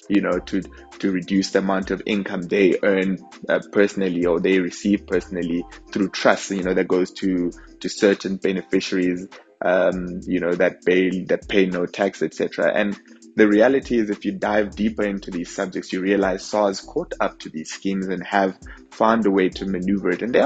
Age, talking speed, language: 20-39, 195 wpm, English